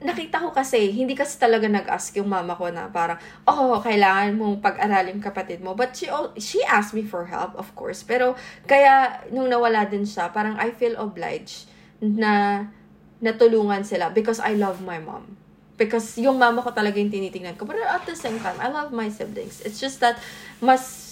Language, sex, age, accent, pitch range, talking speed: Filipino, female, 20-39, native, 195-245 Hz, 190 wpm